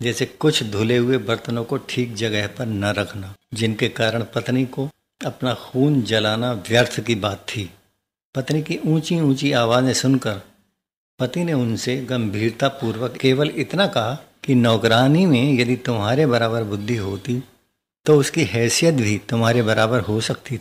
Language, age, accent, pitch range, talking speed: Hindi, 60-79, native, 110-130 Hz, 150 wpm